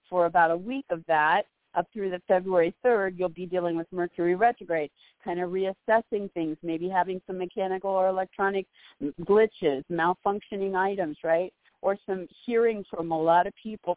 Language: English